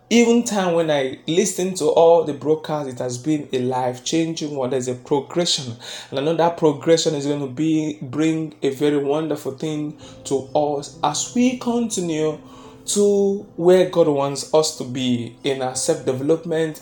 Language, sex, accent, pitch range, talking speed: English, male, Nigerian, 130-170 Hz, 170 wpm